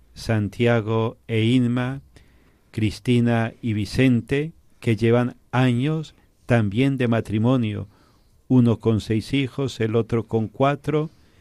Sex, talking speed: male, 105 wpm